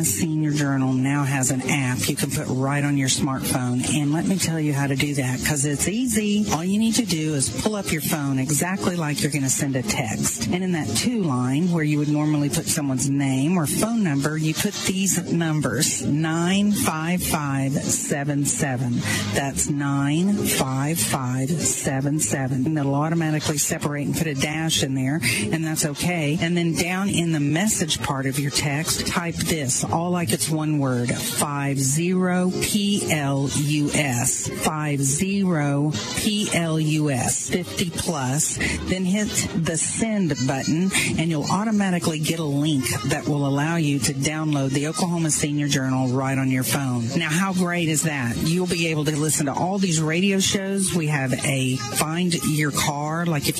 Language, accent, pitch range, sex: English, American, 140-175 Hz, female